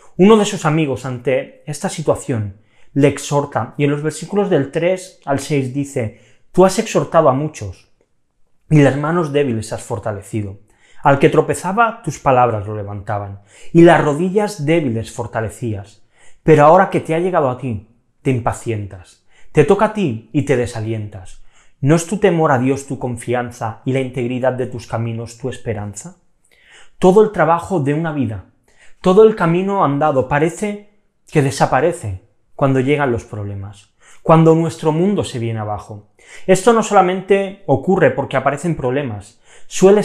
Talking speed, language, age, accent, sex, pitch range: 155 wpm, Spanish, 30-49, Spanish, male, 115-165 Hz